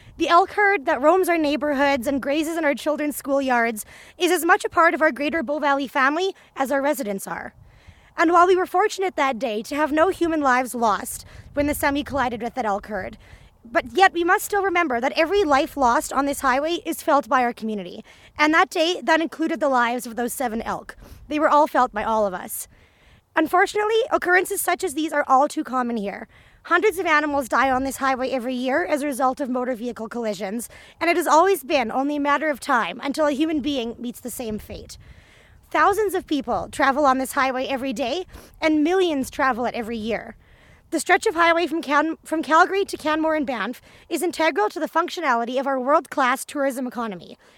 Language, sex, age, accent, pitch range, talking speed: English, female, 20-39, American, 255-330 Hz, 210 wpm